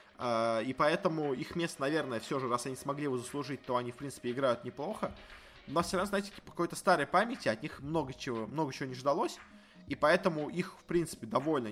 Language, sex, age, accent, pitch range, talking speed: Russian, male, 20-39, native, 125-170 Hz, 215 wpm